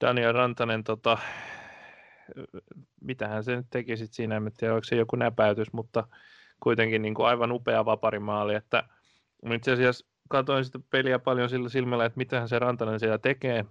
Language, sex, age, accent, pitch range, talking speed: Finnish, male, 20-39, native, 110-120 Hz, 155 wpm